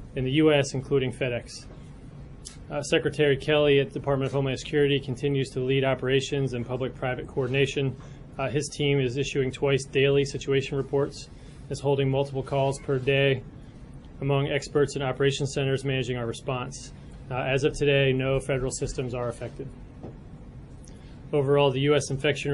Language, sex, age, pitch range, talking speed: English, male, 20-39, 130-140 Hz, 150 wpm